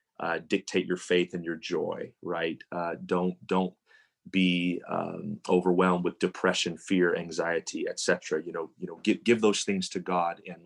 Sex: male